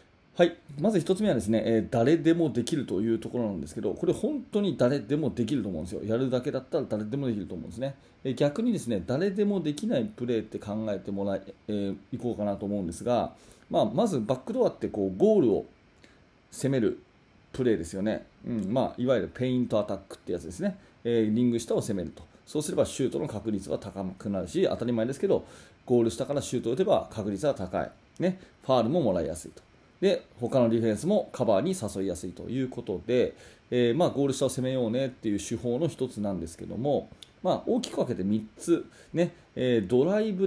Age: 30-49